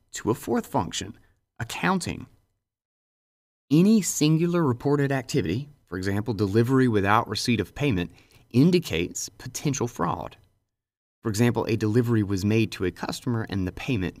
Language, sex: English, male